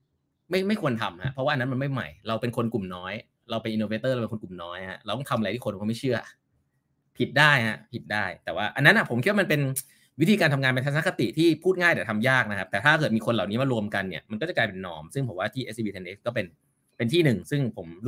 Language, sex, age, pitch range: Thai, male, 20-39, 110-155 Hz